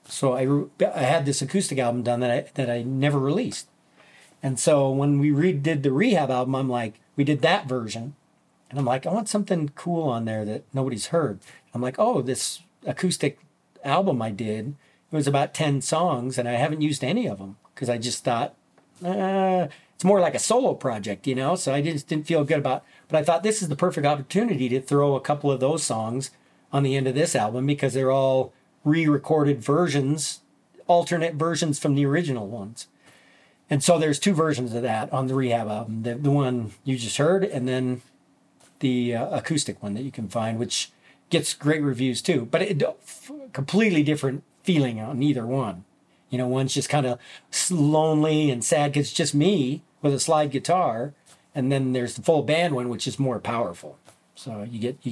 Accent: American